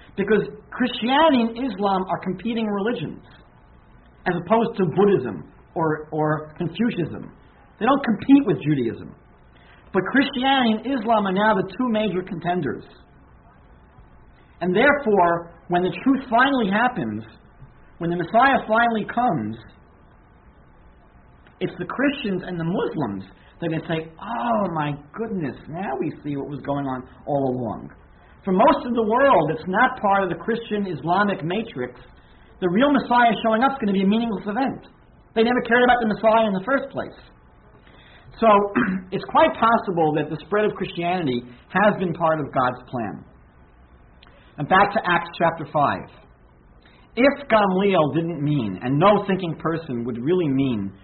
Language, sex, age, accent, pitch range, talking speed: English, male, 50-69, American, 145-225 Hz, 155 wpm